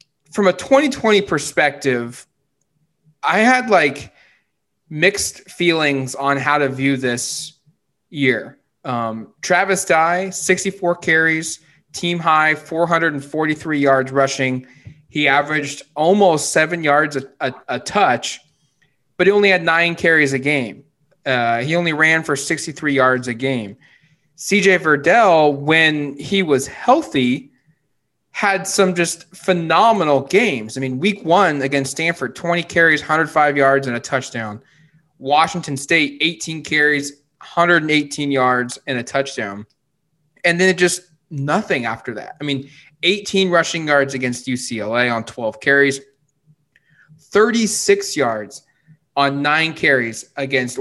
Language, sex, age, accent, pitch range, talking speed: English, male, 20-39, American, 135-170 Hz, 125 wpm